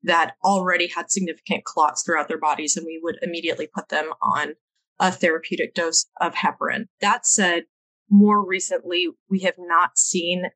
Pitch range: 175-205 Hz